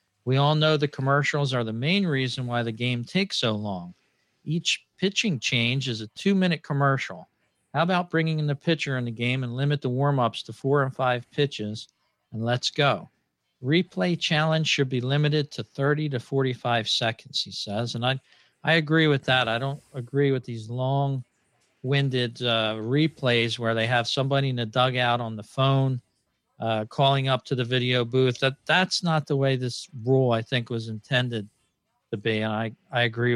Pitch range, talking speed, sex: 115-145 Hz, 185 wpm, male